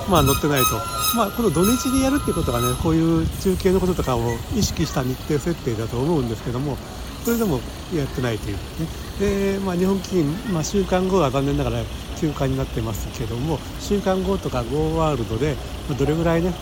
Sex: male